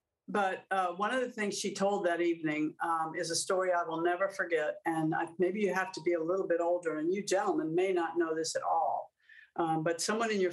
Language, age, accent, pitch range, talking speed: English, 60-79, American, 165-200 Hz, 245 wpm